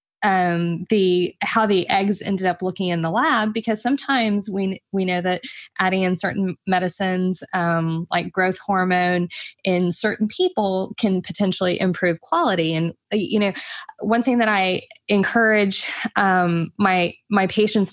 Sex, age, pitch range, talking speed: female, 20-39, 180-220 Hz, 145 wpm